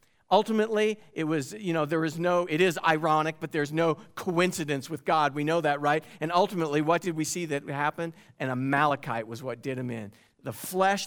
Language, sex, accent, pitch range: English, male, American, 155-190 Hz